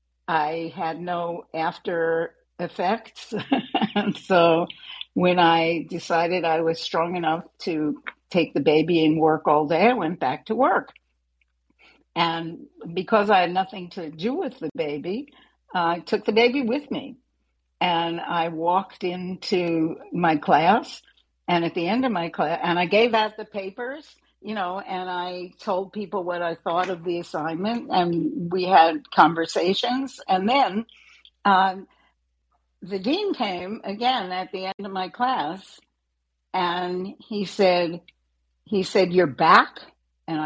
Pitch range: 160-195 Hz